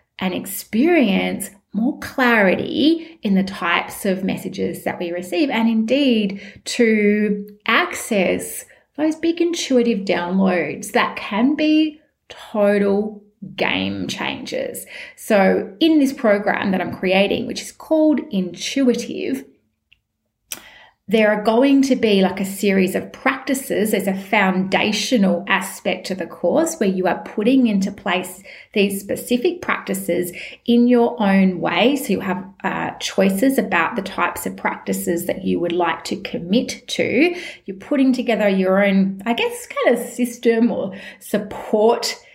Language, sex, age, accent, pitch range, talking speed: English, female, 30-49, Australian, 175-245 Hz, 135 wpm